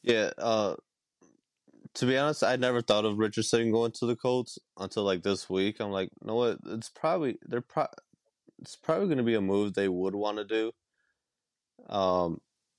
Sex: male